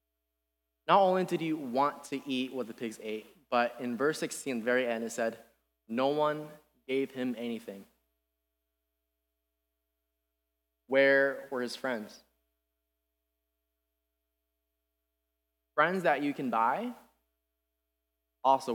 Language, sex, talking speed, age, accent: English, male, 110 wpm, 20-39, American